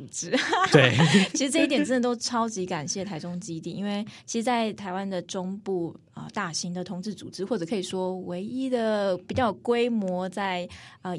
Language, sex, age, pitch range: Chinese, female, 20-39, 175-220 Hz